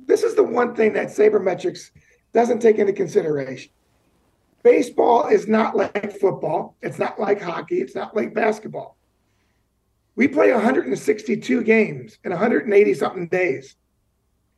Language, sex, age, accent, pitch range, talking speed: English, male, 40-59, American, 210-260 Hz, 130 wpm